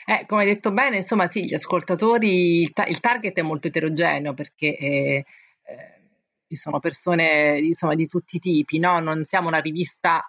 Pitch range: 160-185 Hz